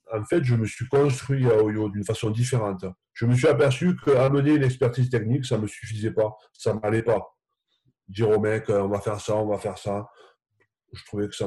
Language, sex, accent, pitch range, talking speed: French, male, French, 110-135 Hz, 225 wpm